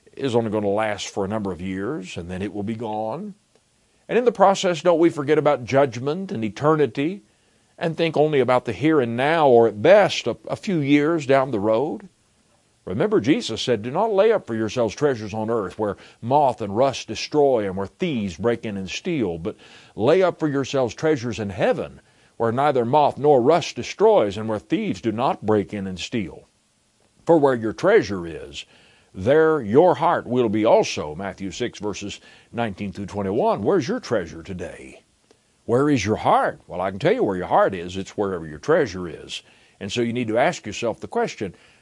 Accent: American